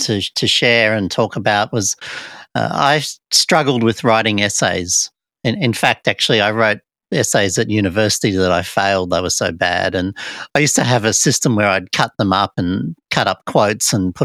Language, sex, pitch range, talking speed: English, male, 105-140 Hz, 200 wpm